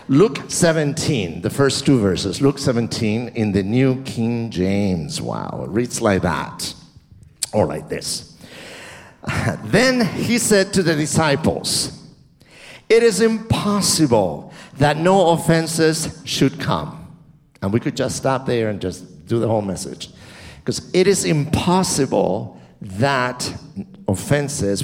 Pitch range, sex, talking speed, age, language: 105-165 Hz, male, 130 wpm, 50-69, English